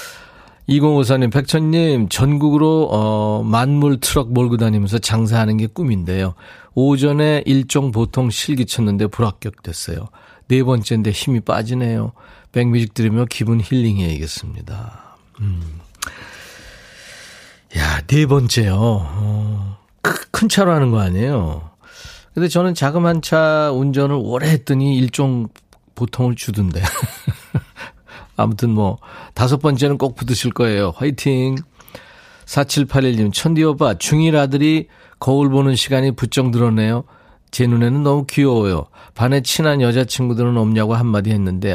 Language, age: Korean, 40-59